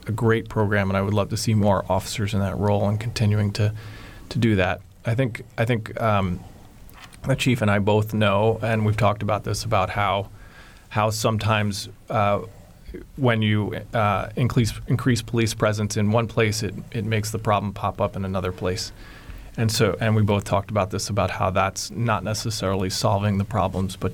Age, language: 30-49, English